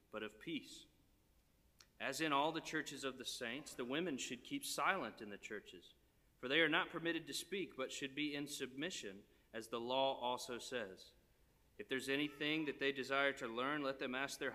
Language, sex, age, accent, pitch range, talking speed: English, male, 40-59, American, 120-150 Hz, 200 wpm